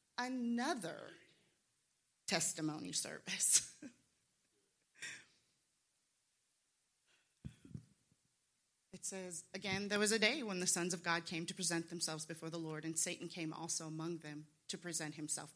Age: 30-49